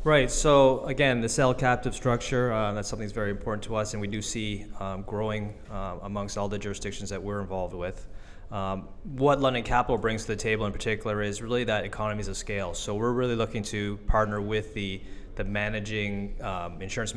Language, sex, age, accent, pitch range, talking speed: English, male, 20-39, American, 95-110 Hz, 195 wpm